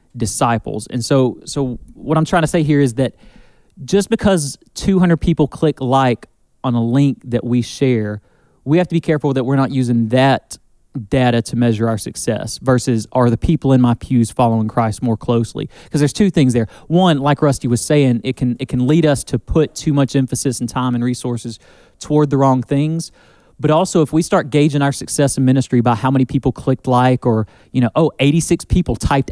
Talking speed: 210 wpm